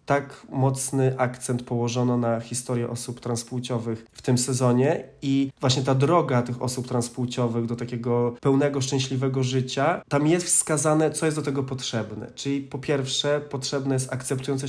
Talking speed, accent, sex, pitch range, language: 150 wpm, native, male, 125-140 Hz, Polish